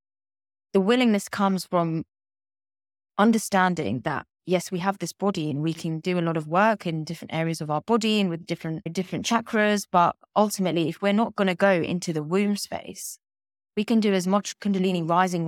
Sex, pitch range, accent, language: female, 160-195 Hz, British, English